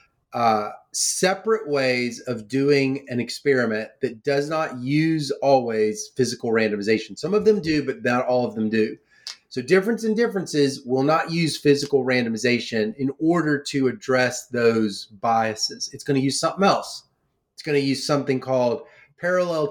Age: 30-49